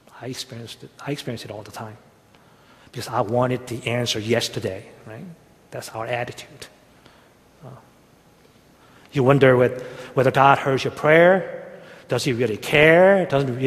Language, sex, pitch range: Korean, male, 120-165 Hz